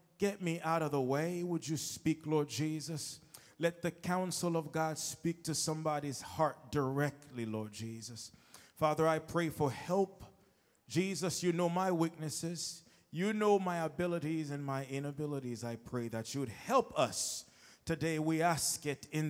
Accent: American